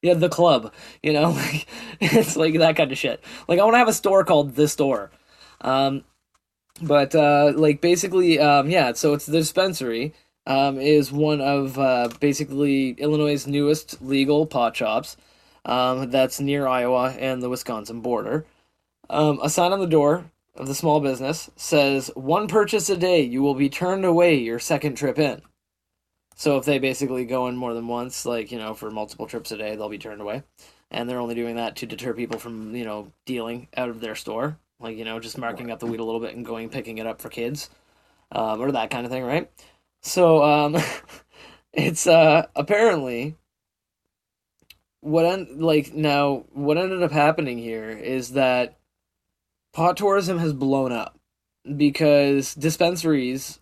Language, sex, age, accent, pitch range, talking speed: English, male, 20-39, American, 120-155 Hz, 180 wpm